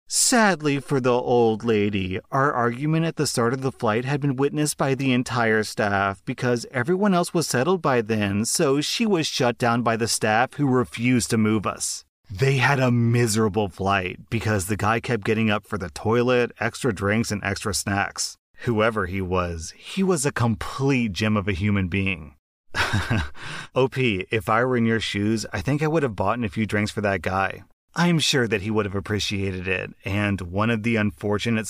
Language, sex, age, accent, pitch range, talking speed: English, male, 30-49, American, 100-120 Hz, 195 wpm